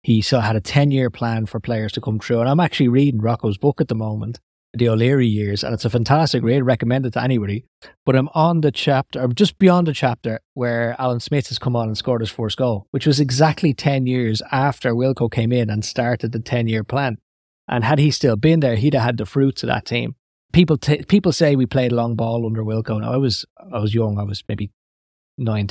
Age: 20-39